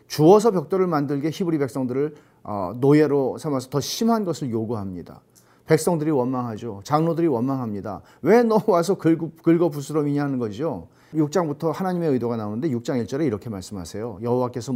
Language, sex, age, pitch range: Korean, male, 40-59, 120-170 Hz